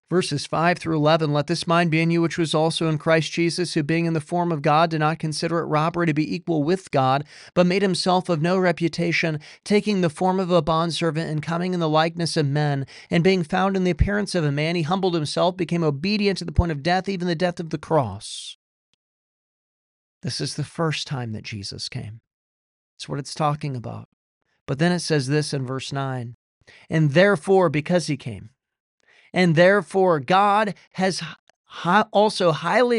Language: English